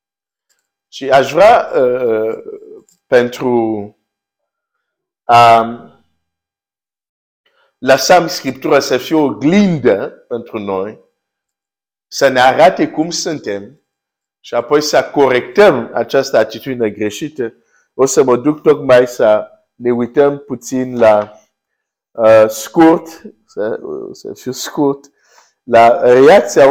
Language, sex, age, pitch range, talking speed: Romanian, male, 50-69, 120-165 Hz, 100 wpm